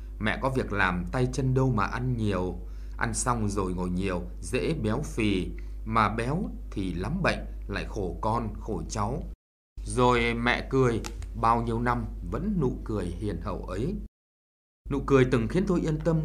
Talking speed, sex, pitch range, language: 175 wpm, male, 90-130 Hz, Vietnamese